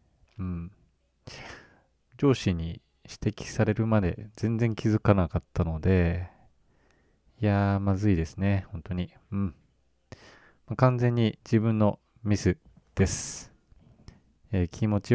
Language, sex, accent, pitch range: Japanese, male, native, 90-115 Hz